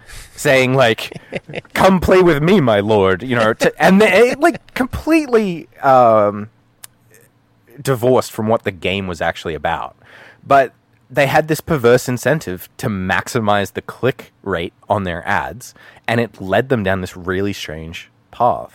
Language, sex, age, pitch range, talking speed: English, male, 20-39, 100-135 Hz, 150 wpm